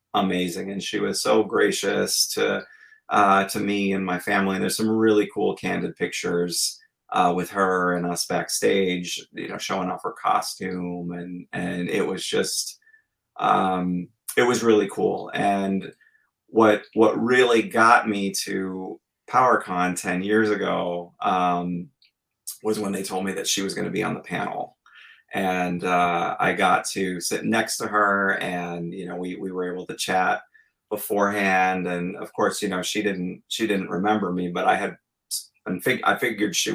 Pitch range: 90-105 Hz